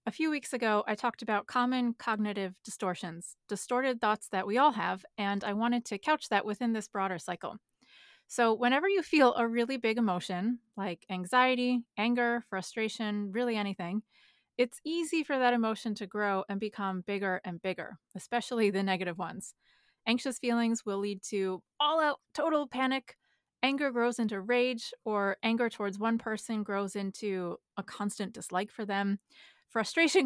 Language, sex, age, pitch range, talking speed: English, female, 20-39, 200-245 Hz, 160 wpm